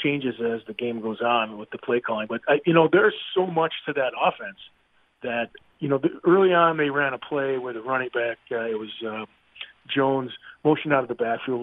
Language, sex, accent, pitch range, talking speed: English, male, American, 120-150 Hz, 215 wpm